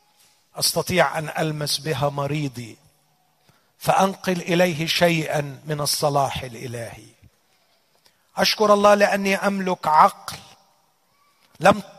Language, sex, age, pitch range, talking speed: Arabic, male, 40-59, 155-205 Hz, 85 wpm